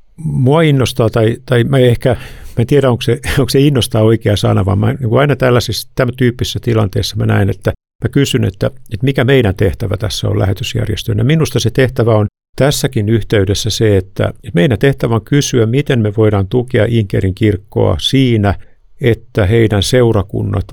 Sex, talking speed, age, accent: male, 170 wpm, 50-69, native